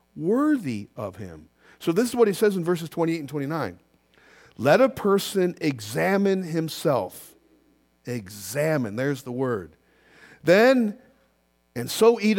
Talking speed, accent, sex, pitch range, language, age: 130 wpm, American, male, 140-220 Hz, English, 50-69